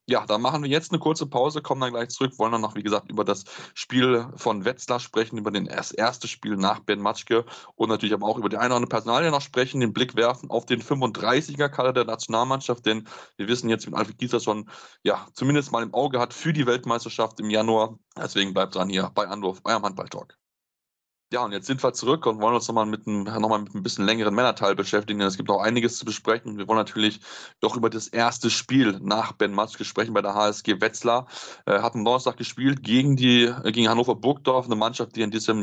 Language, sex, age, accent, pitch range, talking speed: German, male, 20-39, German, 105-125 Hz, 215 wpm